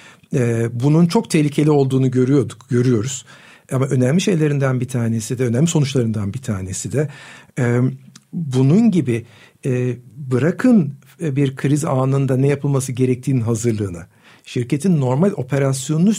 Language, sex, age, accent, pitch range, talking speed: Turkish, male, 60-79, native, 120-150 Hz, 110 wpm